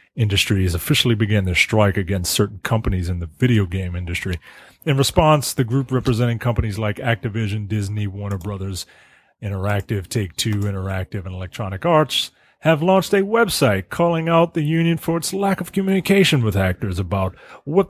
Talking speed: 160 wpm